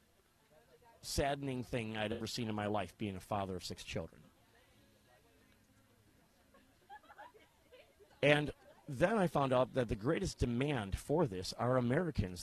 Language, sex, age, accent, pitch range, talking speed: English, male, 40-59, American, 105-140 Hz, 130 wpm